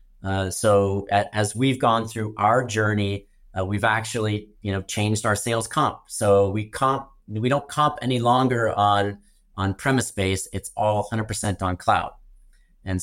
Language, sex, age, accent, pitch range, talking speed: English, male, 30-49, American, 100-115 Hz, 165 wpm